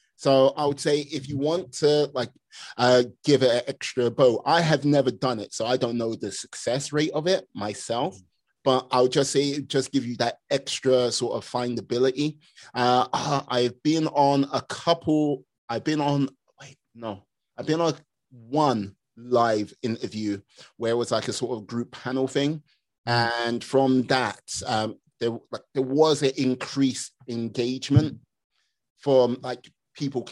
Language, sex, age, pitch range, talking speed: English, male, 30-49, 115-140 Hz, 165 wpm